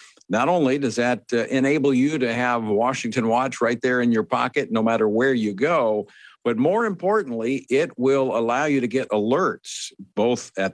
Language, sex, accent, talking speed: English, male, American, 185 wpm